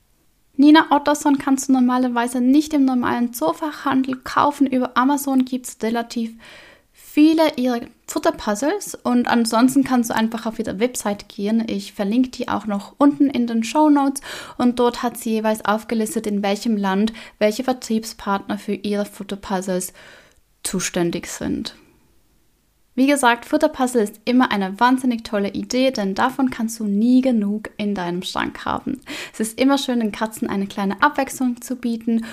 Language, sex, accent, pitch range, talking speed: German, female, German, 210-270 Hz, 150 wpm